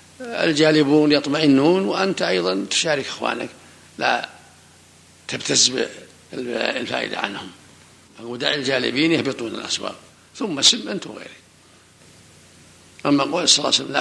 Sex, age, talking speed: male, 60-79, 95 wpm